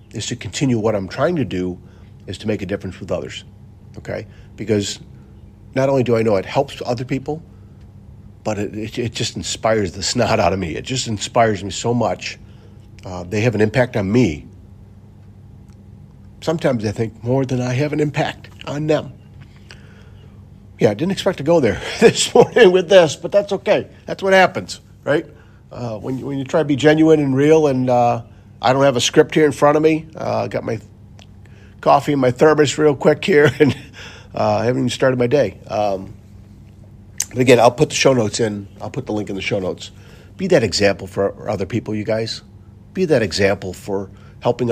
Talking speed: 200 wpm